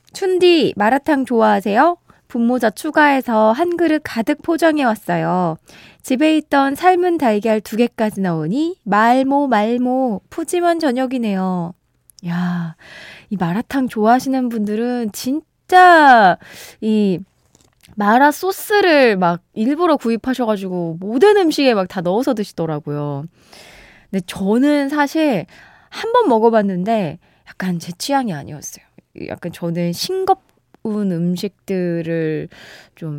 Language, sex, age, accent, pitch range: Korean, female, 20-39, native, 180-285 Hz